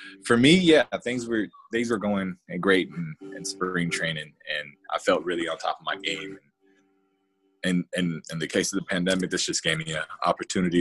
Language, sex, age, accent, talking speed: English, male, 20-39, American, 200 wpm